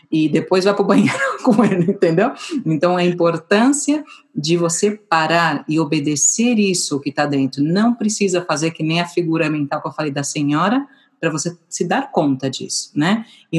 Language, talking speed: Portuguese, 180 wpm